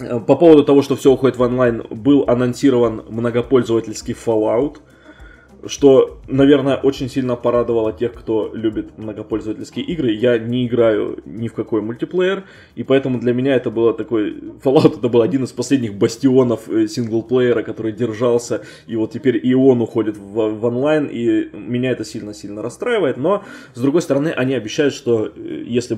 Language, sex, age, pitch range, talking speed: Russian, male, 20-39, 110-130 Hz, 155 wpm